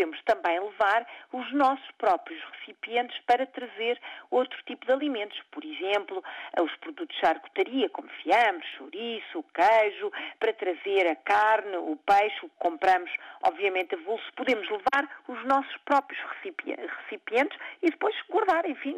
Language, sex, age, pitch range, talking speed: Portuguese, female, 50-69, 200-290 Hz, 140 wpm